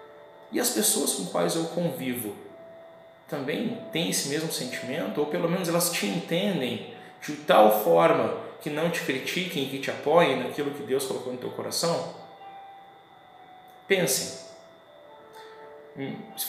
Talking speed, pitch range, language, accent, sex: 135 wpm, 125-175 Hz, Portuguese, Brazilian, male